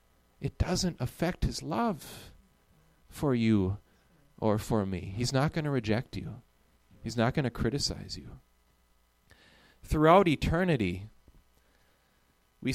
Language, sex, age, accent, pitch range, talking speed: English, male, 30-49, American, 100-165 Hz, 120 wpm